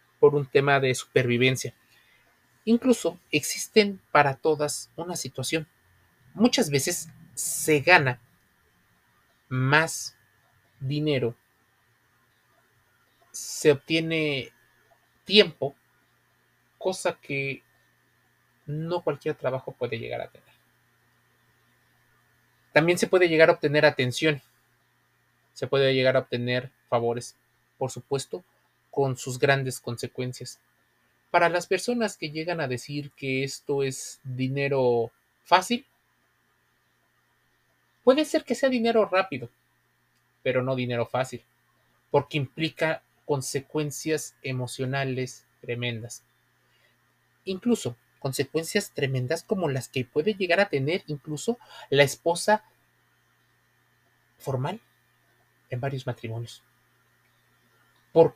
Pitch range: 120-155 Hz